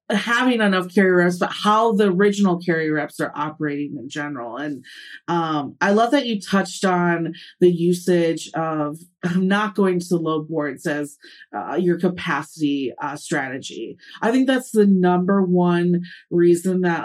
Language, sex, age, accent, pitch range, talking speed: English, female, 30-49, American, 165-195 Hz, 160 wpm